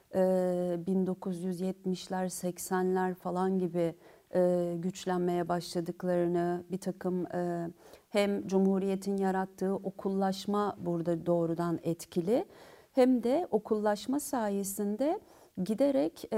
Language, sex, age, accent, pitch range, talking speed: Turkish, female, 50-69, native, 180-210 Hz, 75 wpm